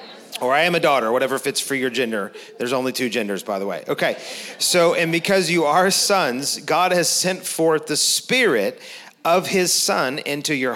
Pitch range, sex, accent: 125-165 Hz, male, American